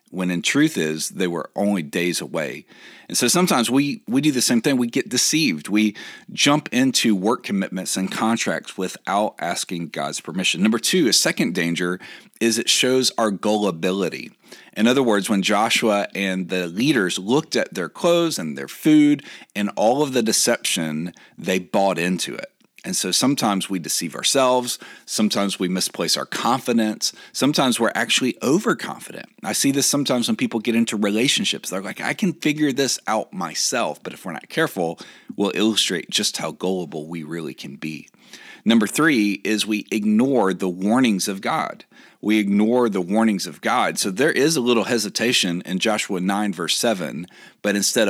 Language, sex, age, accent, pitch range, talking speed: English, male, 40-59, American, 95-140 Hz, 175 wpm